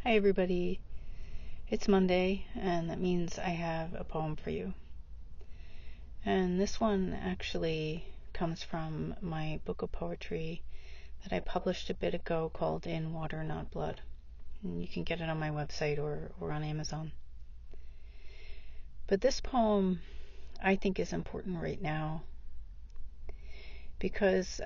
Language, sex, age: English, female, 40-59